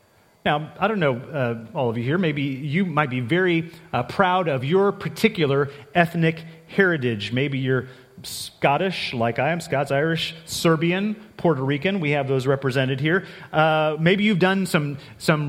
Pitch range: 145-190 Hz